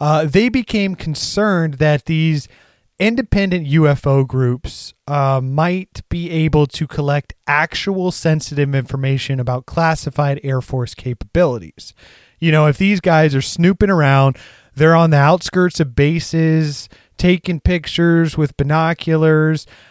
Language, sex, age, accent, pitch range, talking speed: English, male, 30-49, American, 135-180 Hz, 125 wpm